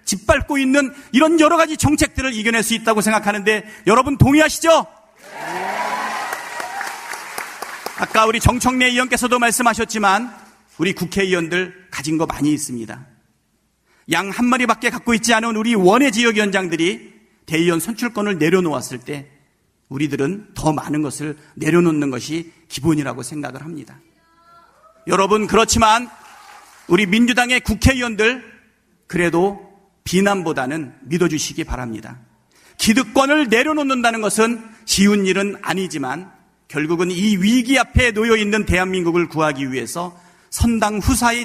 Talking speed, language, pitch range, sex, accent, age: 100 wpm, English, 175-280 Hz, male, Korean, 40-59